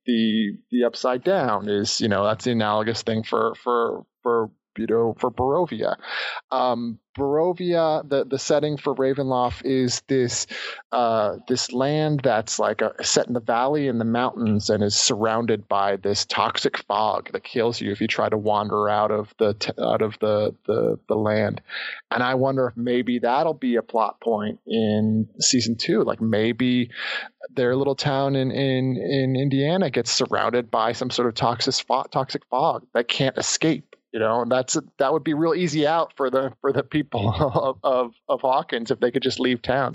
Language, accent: English, American